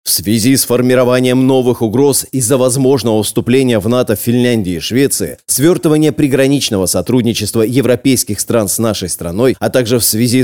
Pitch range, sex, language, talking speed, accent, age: 115-140 Hz, male, Russian, 150 wpm, native, 20-39